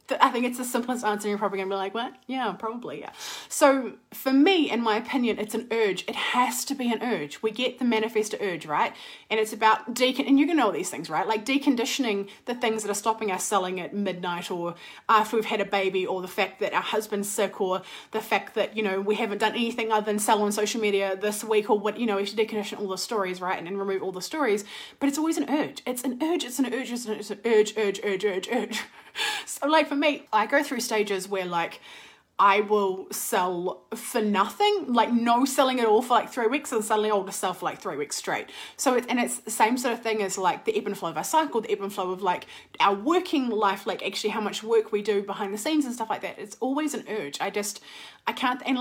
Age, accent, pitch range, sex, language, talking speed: 20-39, Australian, 200-250 Hz, female, English, 265 wpm